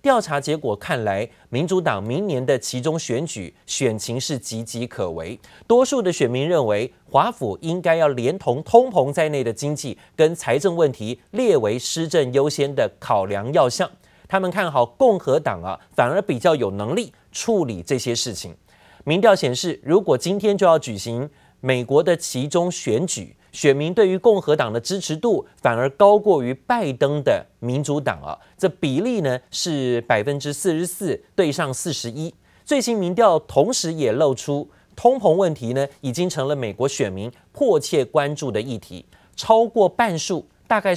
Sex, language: male, Chinese